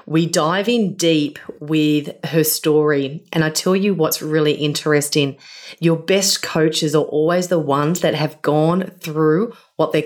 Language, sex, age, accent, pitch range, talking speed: English, female, 30-49, Australian, 145-170 Hz, 160 wpm